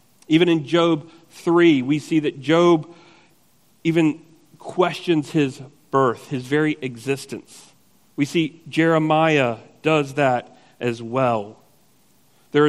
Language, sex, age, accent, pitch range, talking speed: English, male, 40-59, American, 130-160 Hz, 110 wpm